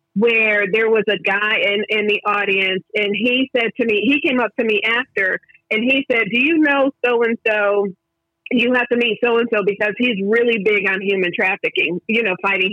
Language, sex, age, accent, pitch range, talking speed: English, female, 40-59, American, 205-250 Hz, 200 wpm